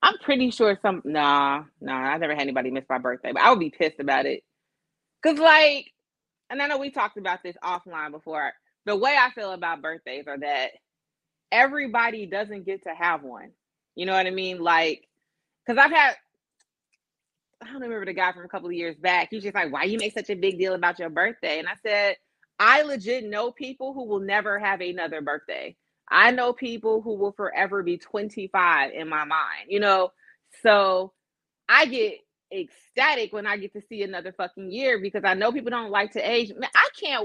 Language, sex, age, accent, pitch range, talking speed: English, female, 30-49, American, 180-250 Hz, 205 wpm